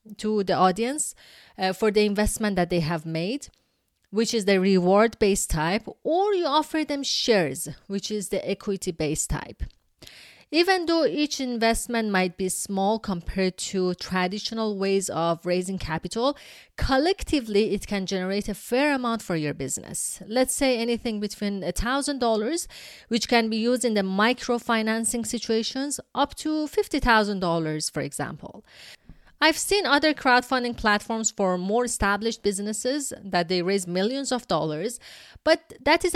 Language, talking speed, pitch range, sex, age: English, 145 wpm, 190-260 Hz, female, 30-49